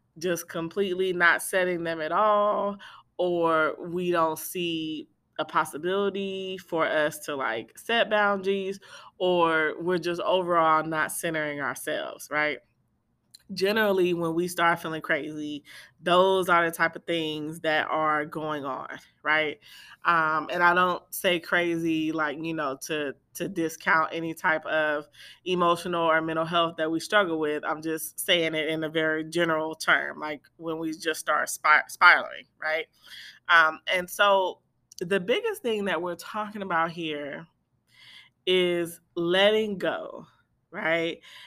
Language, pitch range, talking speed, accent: English, 155-180 Hz, 145 wpm, American